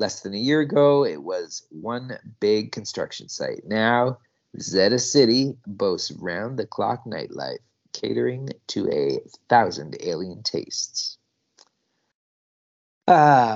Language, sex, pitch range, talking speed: English, male, 110-155 Hz, 105 wpm